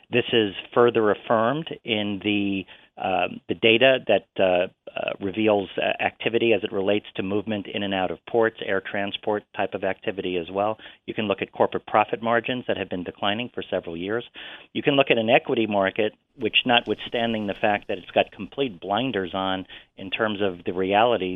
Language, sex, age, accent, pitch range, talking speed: English, male, 40-59, American, 95-115 Hz, 185 wpm